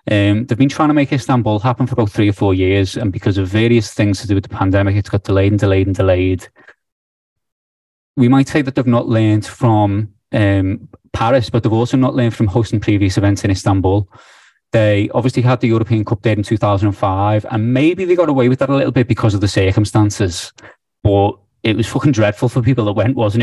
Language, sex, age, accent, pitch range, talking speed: English, male, 20-39, British, 100-125 Hz, 220 wpm